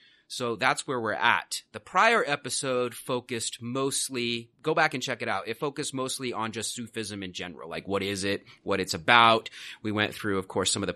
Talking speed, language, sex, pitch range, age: 215 wpm, English, male, 100-125 Hz, 30-49